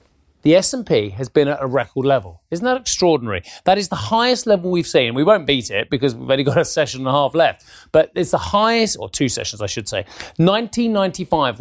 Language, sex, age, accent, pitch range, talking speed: English, male, 30-49, British, 130-180 Hz, 220 wpm